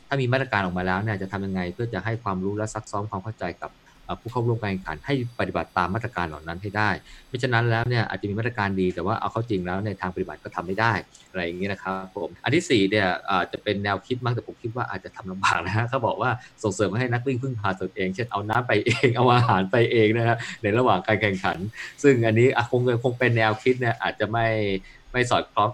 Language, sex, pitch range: Thai, male, 95-120 Hz